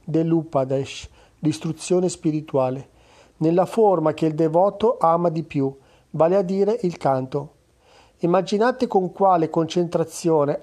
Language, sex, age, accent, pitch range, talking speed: Italian, male, 40-59, native, 150-185 Hz, 115 wpm